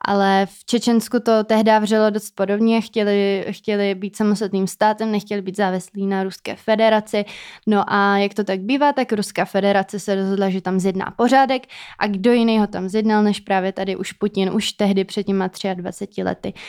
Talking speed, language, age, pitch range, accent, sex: 185 wpm, Czech, 20-39, 195-215 Hz, native, female